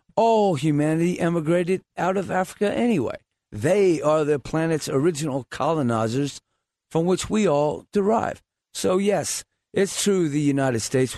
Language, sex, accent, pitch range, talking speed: English, male, American, 135-180 Hz, 135 wpm